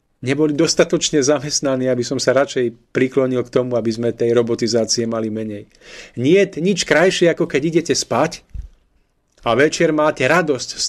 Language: Slovak